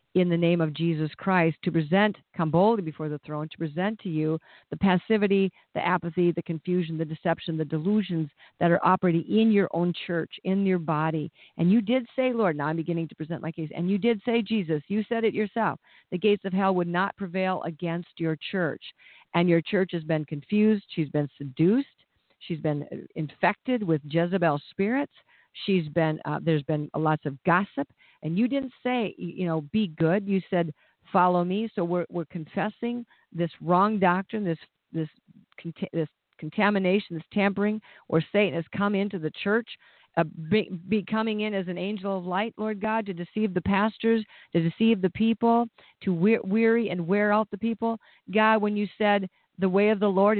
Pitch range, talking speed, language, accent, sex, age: 165-215 Hz, 190 wpm, English, American, female, 50-69